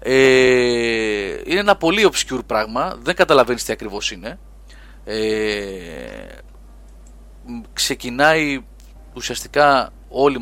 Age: 30-49